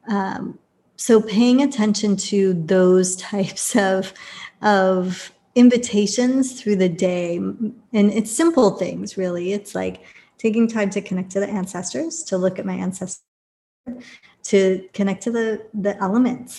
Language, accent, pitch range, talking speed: English, American, 185-210 Hz, 135 wpm